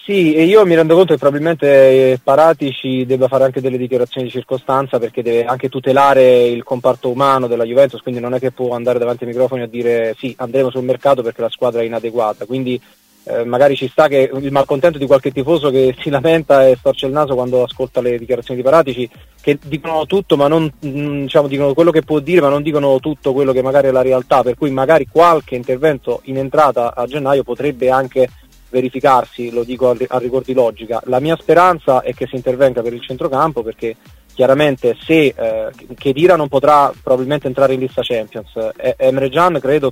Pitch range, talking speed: 125-145 Hz, 200 wpm